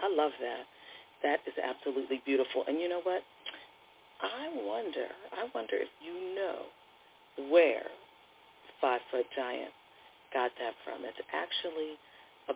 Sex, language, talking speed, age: female, English, 130 wpm, 40-59